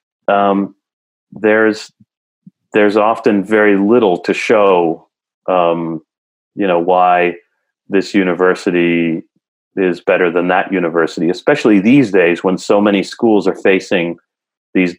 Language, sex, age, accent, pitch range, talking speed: English, male, 30-49, American, 90-100 Hz, 115 wpm